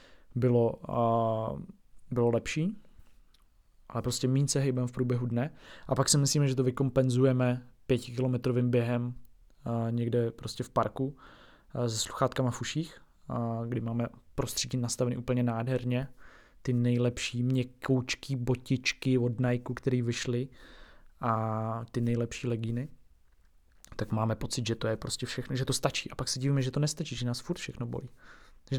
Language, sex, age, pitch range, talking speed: Czech, male, 20-39, 120-140 Hz, 150 wpm